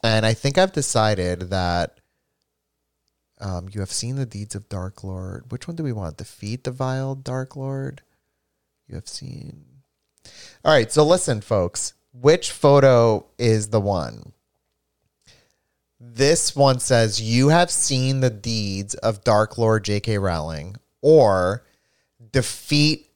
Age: 30-49